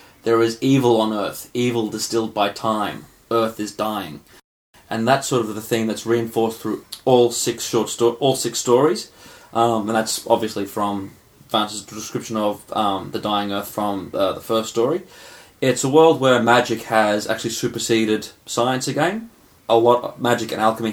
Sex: male